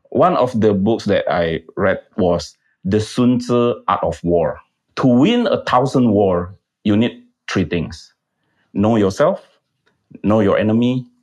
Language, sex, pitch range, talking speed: Indonesian, male, 95-135 Hz, 150 wpm